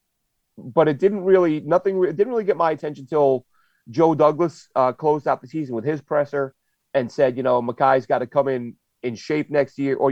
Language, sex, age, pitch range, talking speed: English, male, 30-49, 125-150 Hz, 215 wpm